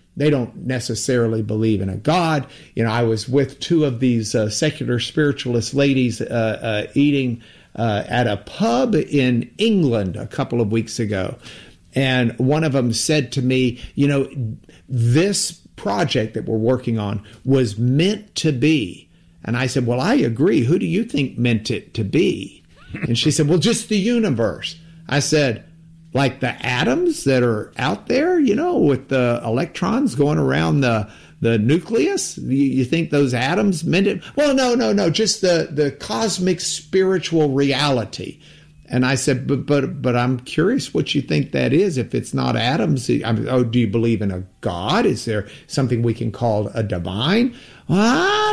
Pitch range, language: 115-165 Hz, English